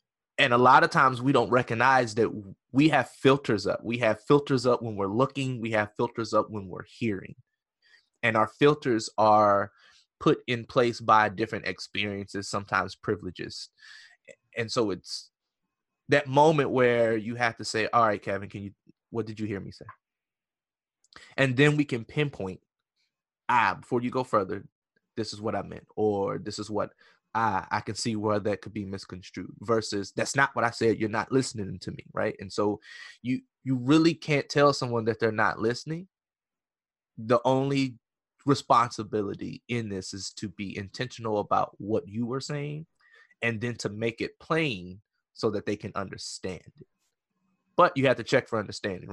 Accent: American